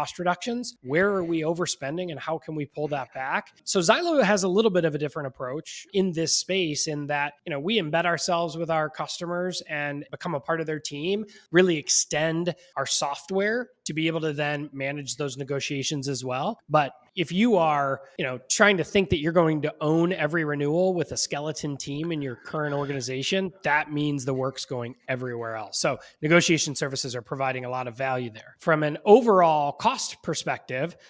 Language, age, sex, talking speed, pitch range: English, 20-39, male, 200 wpm, 145-175 Hz